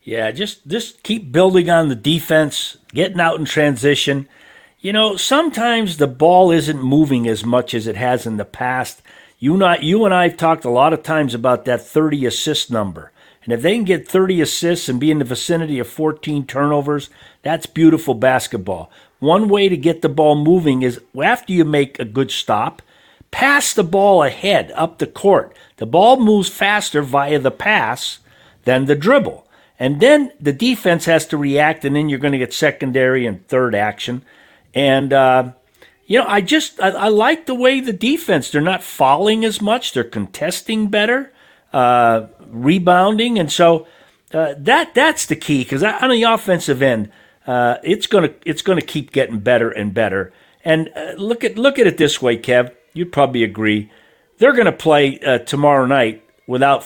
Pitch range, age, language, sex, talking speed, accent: 130-190 Hz, 50-69, English, male, 180 wpm, American